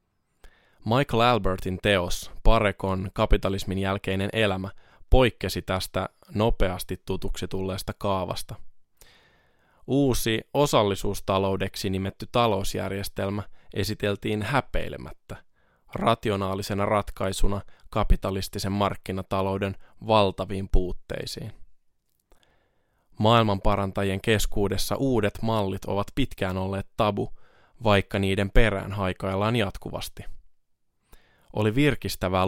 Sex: male